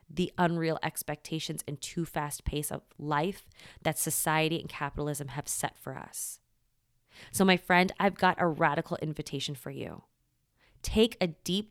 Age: 20-39